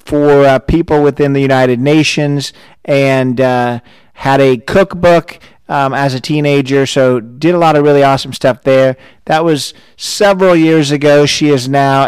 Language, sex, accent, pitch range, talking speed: English, male, American, 130-155 Hz, 165 wpm